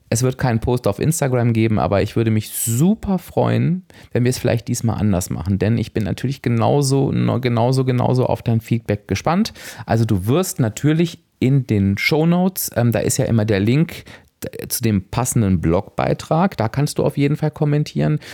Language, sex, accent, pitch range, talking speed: German, male, German, 100-135 Hz, 190 wpm